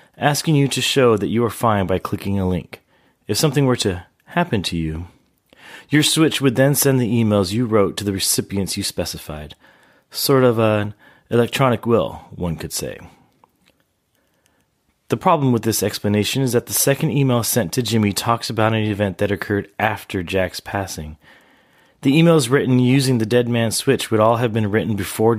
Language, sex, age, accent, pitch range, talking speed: English, male, 30-49, American, 95-125 Hz, 180 wpm